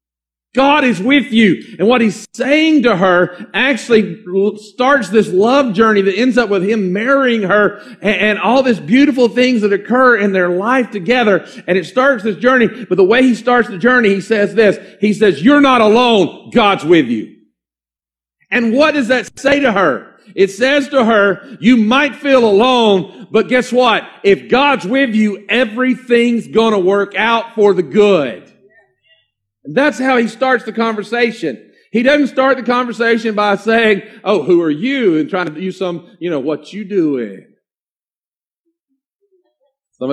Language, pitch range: English, 195-255 Hz